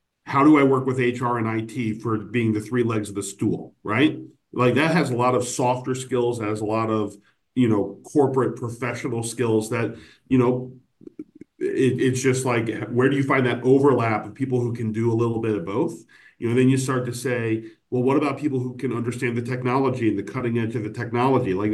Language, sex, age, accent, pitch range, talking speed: English, male, 40-59, American, 115-135 Hz, 220 wpm